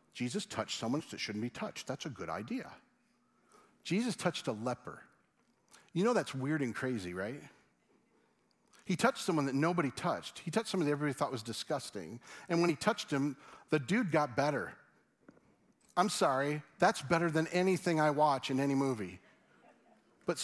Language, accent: English, American